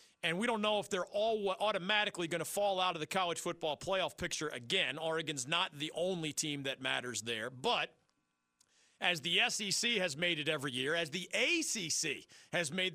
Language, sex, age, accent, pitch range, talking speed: English, male, 40-59, American, 155-205 Hz, 190 wpm